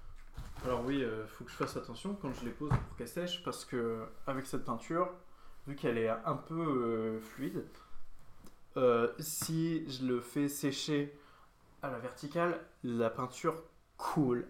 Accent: French